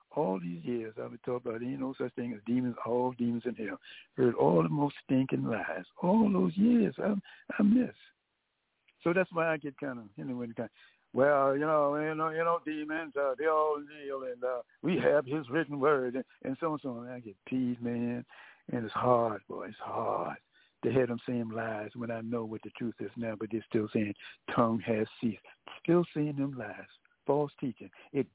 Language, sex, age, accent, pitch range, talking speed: English, male, 60-79, American, 120-145 Hz, 220 wpm